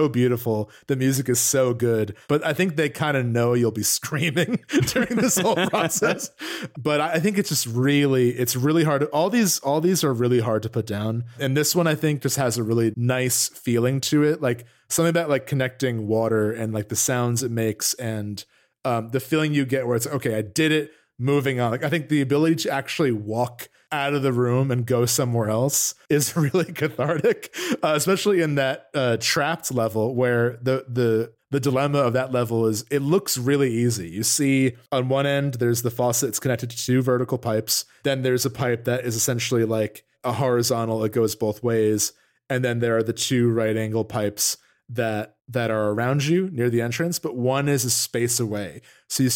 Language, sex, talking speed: English, male, 205 wpm